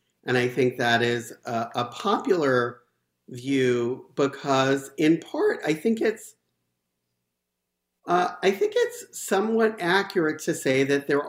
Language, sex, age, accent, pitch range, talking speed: English, male, 50-69, American, 125-170 Hz, 130 wpm